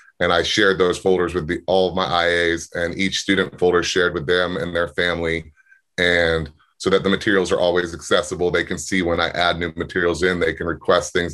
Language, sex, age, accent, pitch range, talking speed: English, male, 30-49, American, 85-95 Hz, 215 wpm